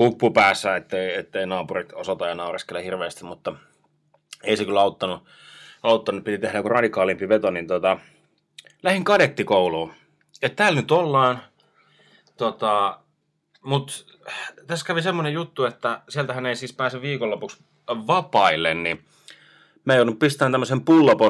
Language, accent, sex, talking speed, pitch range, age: Finnish, native, male, 125 wpm, 95-145 Hz, 30-49